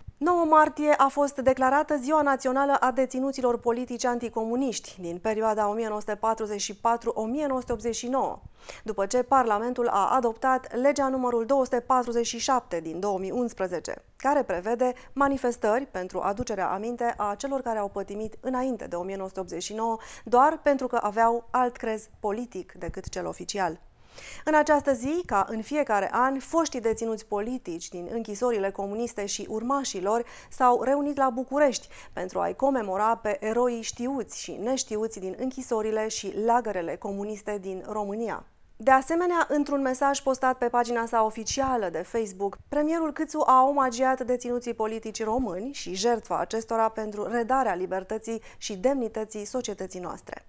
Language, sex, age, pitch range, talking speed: Romanian, female, 30-49, 210-260 Hz, 130 wpm